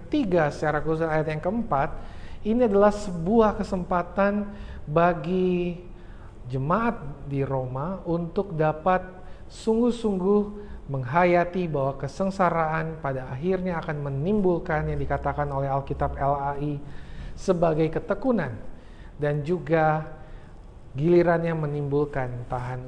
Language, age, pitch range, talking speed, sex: Indonesian, 40-59, 135-185 Hz, 95 wpm, male